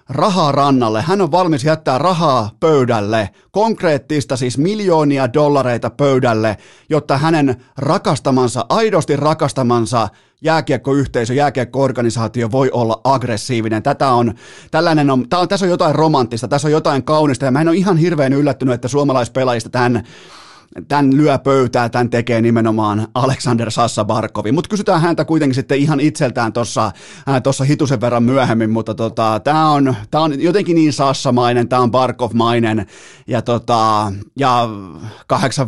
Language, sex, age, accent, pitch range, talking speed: Finnish, male, 30-49, native, 120-150 Hz, 140 wpm